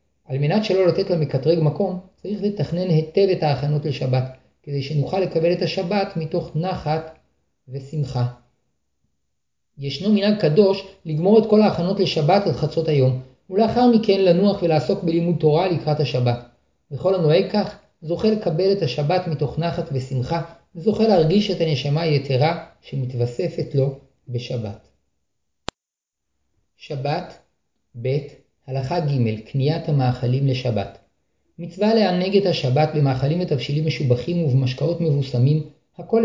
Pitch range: 135-180 Hz